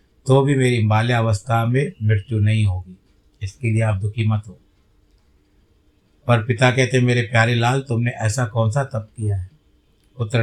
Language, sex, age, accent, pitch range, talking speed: Hindi, male, 50-69, native, 100-120 Hz, 160 wpm